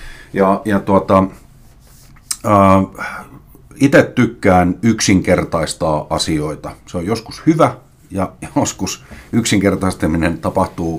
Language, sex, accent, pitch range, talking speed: Finnish, male, native, 80-115 Hz, 85 wpm